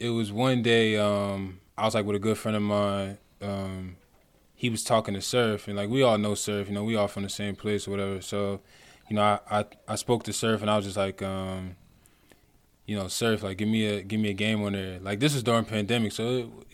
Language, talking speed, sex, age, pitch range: English, 255 wpm, male, 20-39, 100-110 Hz